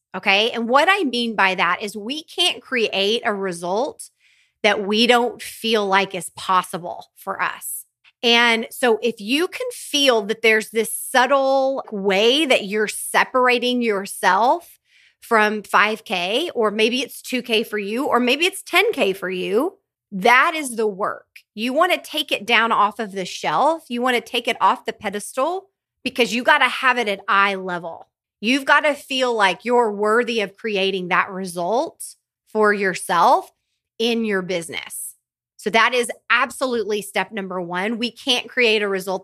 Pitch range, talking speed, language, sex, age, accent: 200-255 Hz, 170 wpm, English, female, 30-49, American